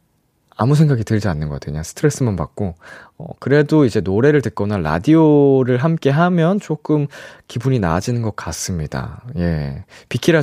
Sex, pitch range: male, 110-165 Hz